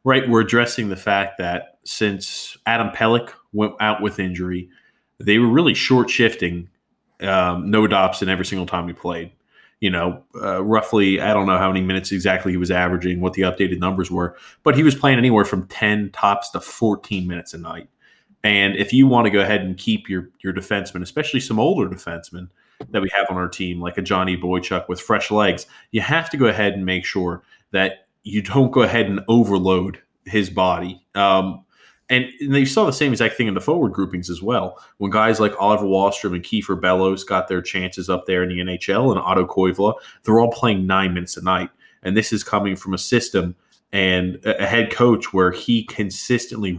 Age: 20-39